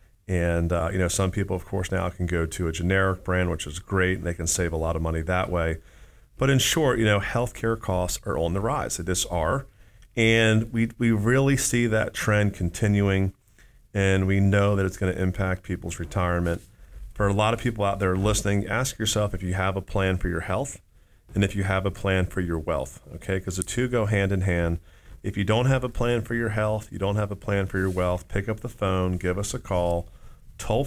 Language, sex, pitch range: English, male, 90-110 Hz